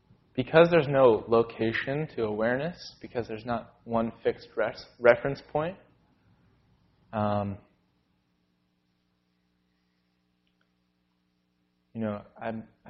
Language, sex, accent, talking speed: English, male, American, 85 wpm